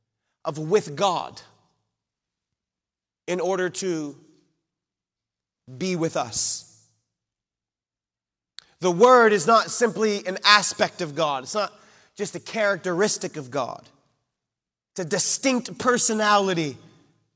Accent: American